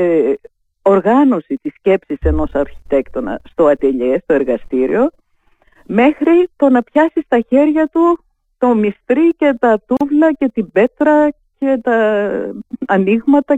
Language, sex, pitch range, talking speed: Greek, female, 175-275 Hz, 120 wpm